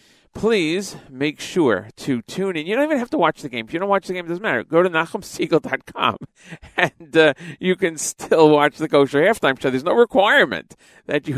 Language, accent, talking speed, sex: English, American, 215 wpm, male